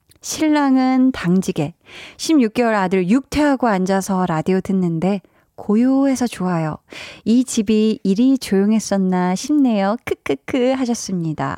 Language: Korean